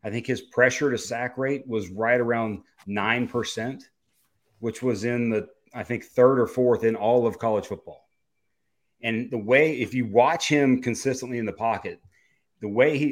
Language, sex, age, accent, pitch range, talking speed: English, male, 30-49, American, 110-130 Hz, 180 wpm